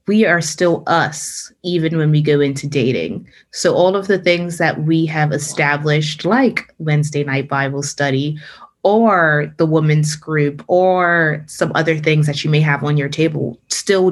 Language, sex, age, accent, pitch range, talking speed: English, female, 20-39, American, 150-175 Hz, 170 wpm